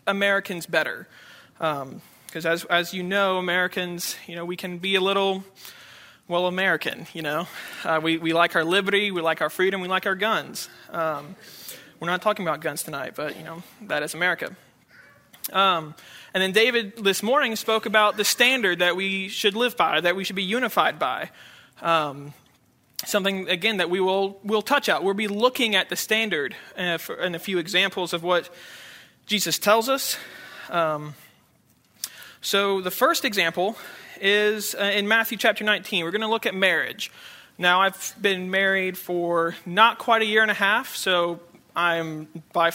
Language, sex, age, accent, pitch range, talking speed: English, male, 20-39, American, 175-210 Hz, 175 wpm